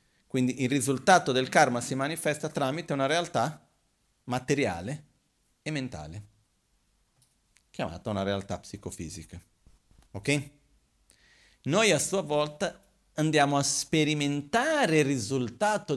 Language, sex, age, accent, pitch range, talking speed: Italian, male, 40-59, native, 105-155 Hz, 100 wpm